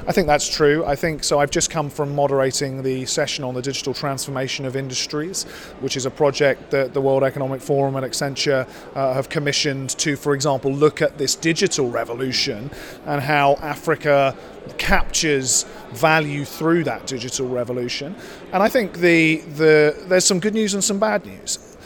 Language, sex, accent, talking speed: English, male, British, 175 wpm